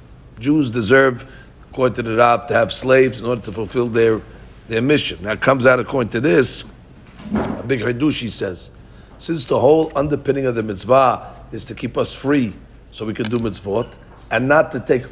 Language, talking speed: English, 190 wpm